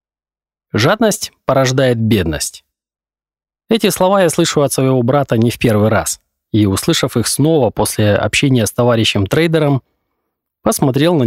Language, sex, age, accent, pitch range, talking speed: Russian, male, 20-39, native, 110-155 Hz, 130 wpm